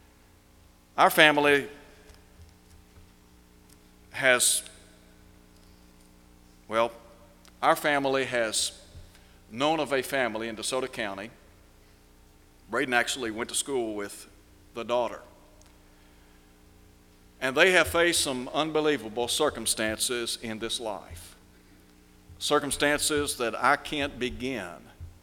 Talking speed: 90 wpm